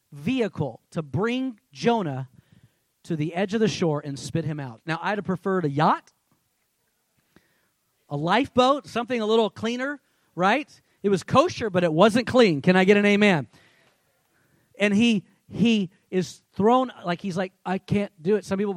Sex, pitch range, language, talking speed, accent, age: male, 145-205 Hz, English, 170 wpm, American, 40-59